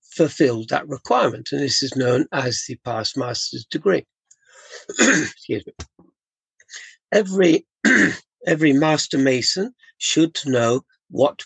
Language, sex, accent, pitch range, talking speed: English, male, British, 125-170 Hz, 110 wpm